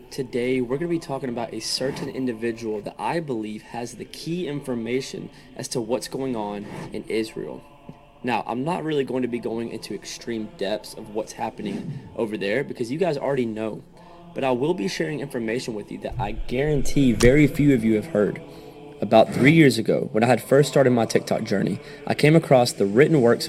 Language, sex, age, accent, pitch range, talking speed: English, male, 20-39, American, 115-155 Hz, 205 wpm